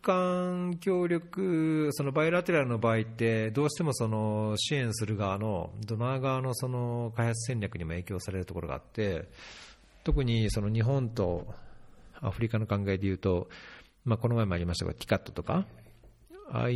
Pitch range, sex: 95-135 Hz, male